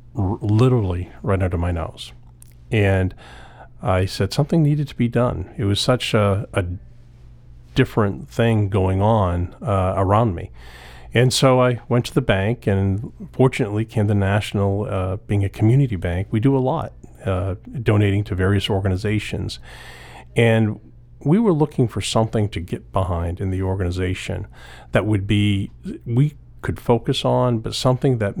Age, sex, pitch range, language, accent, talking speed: 40-59, male, 95-120 Hz, English, American, 150 wpm